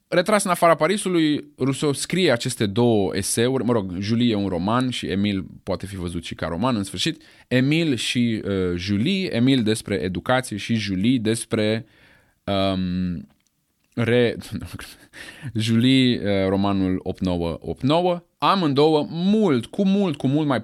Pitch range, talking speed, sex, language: 100-140 Hz, 140 wpm, male, Romanian